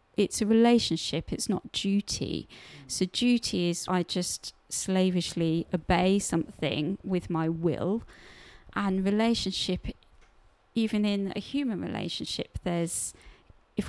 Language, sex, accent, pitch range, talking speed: English, female, British, 180-215 Hz, 110 wpm